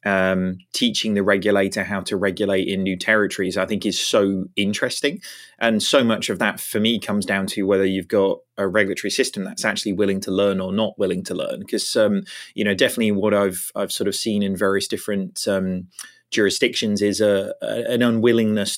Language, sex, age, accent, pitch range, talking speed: English, male, 30-49, British, 100-115 Hz, 200 wpm